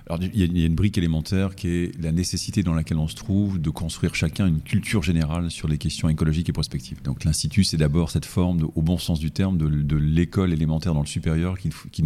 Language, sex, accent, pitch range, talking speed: French, male, French, 75-90 Hz, 240 wpm